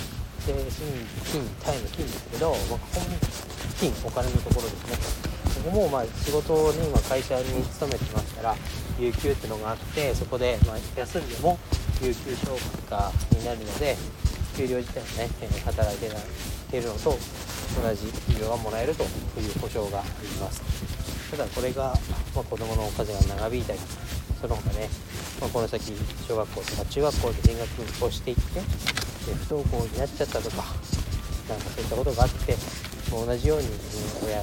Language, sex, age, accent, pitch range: Japanese, male, 40-59, native, 90-120 Hz